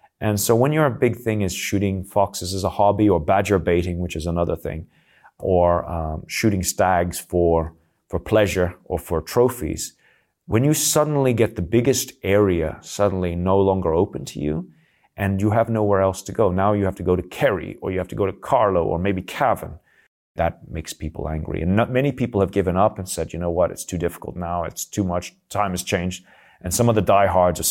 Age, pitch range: 30-49, 85-105 Hz